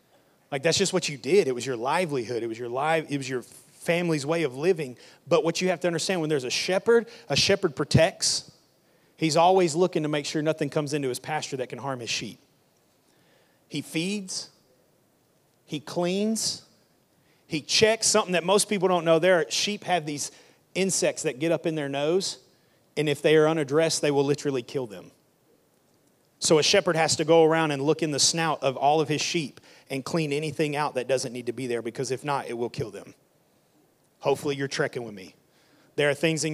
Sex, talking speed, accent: male, 210 wpm, American